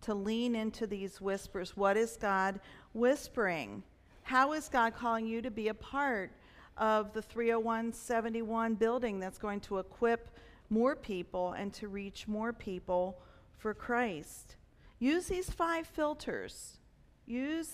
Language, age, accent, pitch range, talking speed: English, 50-69, American, 195-235 Hz, 135 wpm